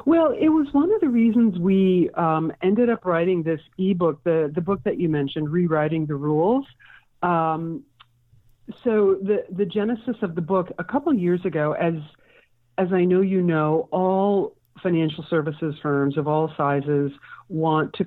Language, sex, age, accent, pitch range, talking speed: English, female, 50-69, American, 145-180 Hz, 165 wpm